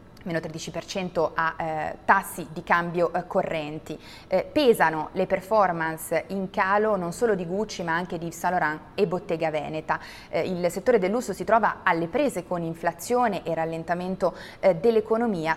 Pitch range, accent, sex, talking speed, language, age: 165-200 Hz, native, female, 165 wpm, Italian, 20-39